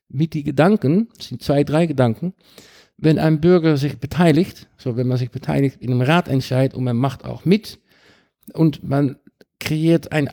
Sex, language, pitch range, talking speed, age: male, German, 135-175 Hz, 180 wpm, 50-69